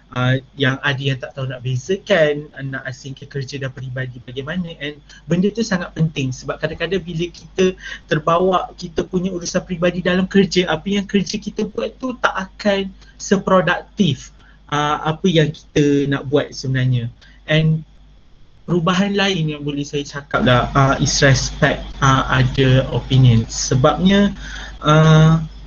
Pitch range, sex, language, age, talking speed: 140-180 Hz, male, Malay, 30-49, 145 wpm